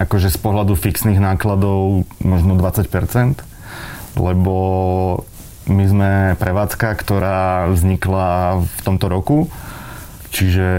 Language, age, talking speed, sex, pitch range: Slovak, 30-49, 95 wpm, male, 90-100 Hz